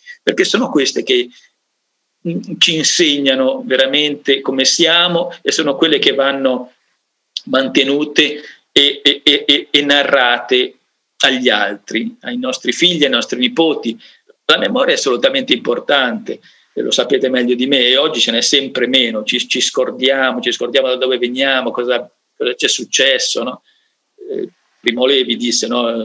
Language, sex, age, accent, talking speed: Italian, male, 50-69, native, 140 wpm